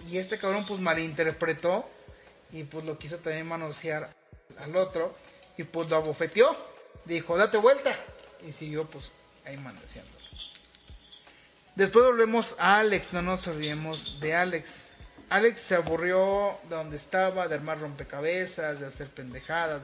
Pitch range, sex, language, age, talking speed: 150-185 Hz, male, Spanish, 30-49, 140 wpm